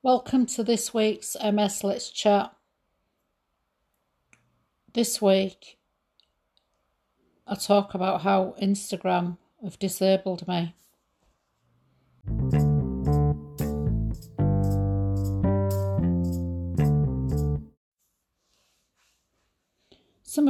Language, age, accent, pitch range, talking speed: English, 60-79, British, 165-200 Hz, 55 wpm